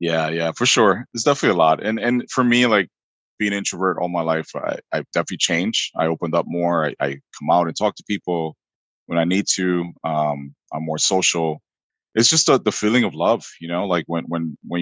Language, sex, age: English, male, 20-39